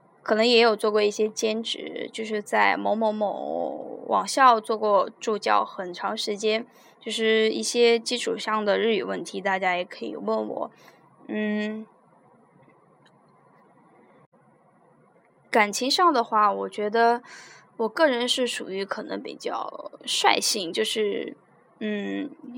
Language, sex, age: Chinese, female, 10-29